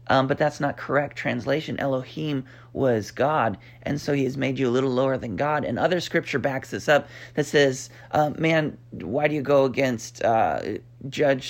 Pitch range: 125-150 Hz